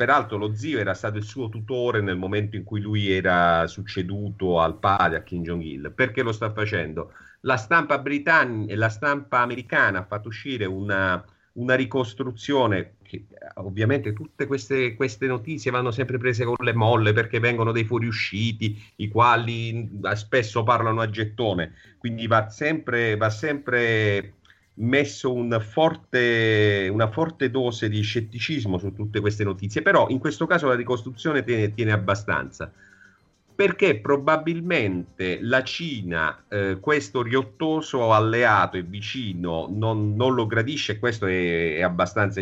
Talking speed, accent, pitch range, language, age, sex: 140 wpm, native, 100-130 Hz, Italian, 40-59, male